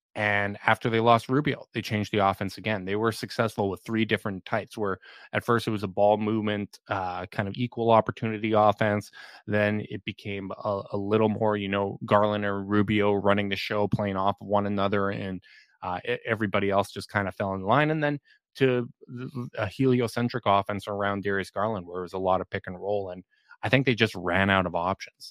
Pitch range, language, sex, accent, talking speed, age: 95-110 Hz, English, male, American, 210 wpm, 20-39